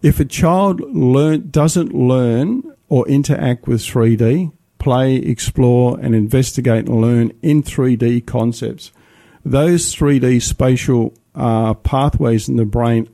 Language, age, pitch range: English, 50-69, 115-145 Hz